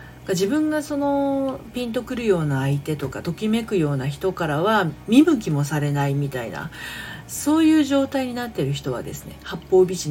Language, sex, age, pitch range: Japanese, female, 40-59, 145-205 Hz